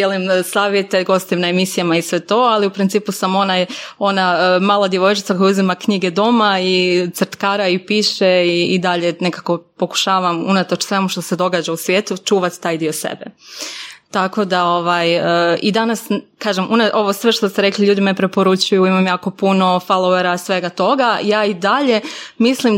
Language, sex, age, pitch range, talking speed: Croatian, female, 20-39, 185-205 Hz, 175 wpm